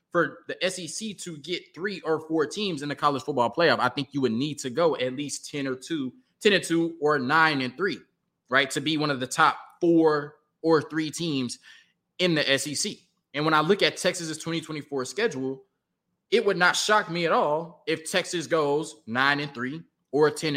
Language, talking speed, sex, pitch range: English, 205 wpm, male, 135-170 Hz